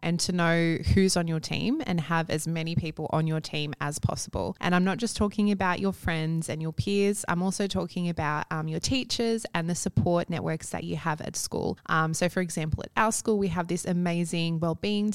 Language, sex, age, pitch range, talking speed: English, female, 20-39, 160-185 Hz, 220 wpm